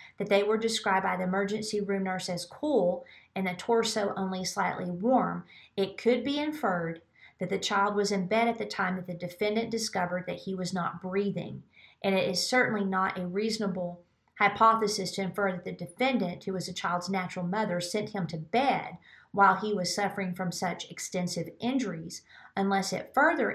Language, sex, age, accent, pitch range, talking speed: English, female, 40-59, American, 180-210 Hz, 185 wpm